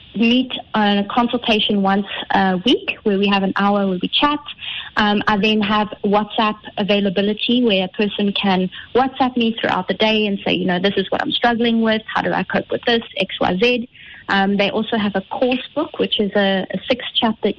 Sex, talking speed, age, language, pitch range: female, 200 wpm, 20-39, English, 200-235 Hz